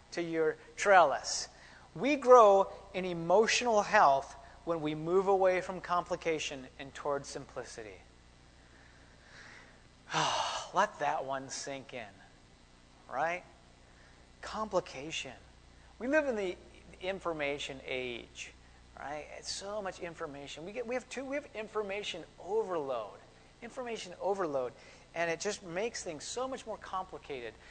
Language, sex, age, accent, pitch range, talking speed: English, male, 30-49, American, 145-215 Hz, 120 wpm